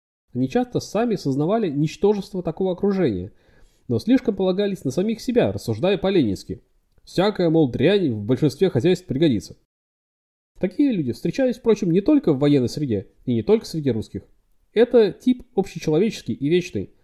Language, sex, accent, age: Russian, male, native, 30-49